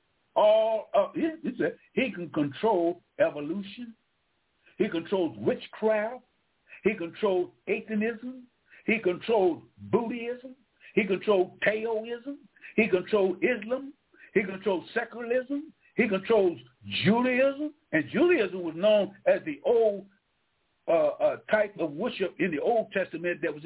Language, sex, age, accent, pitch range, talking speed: English, male, 60-79, American, 185-260 Hz, 115 wpm